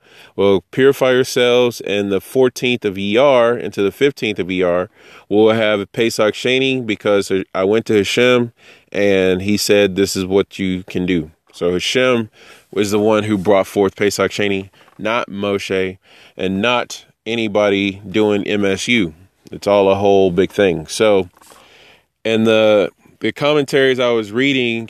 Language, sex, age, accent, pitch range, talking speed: English, male, 30-49, American, 100-125 Hz, 155 wpm